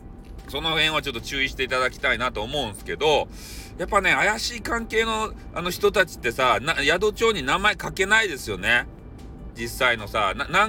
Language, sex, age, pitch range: Japanese, male, 40-59, 115-165 Hz